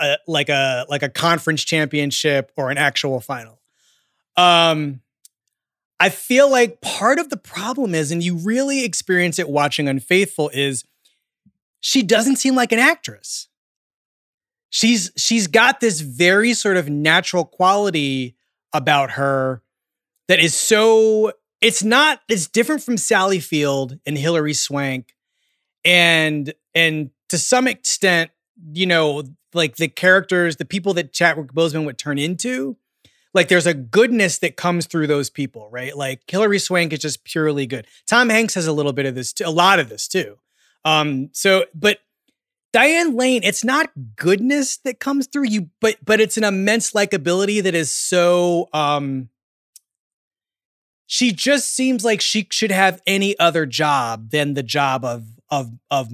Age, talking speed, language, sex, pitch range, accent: 30-49, 155 wpm, English, male, 145-215 Hz, American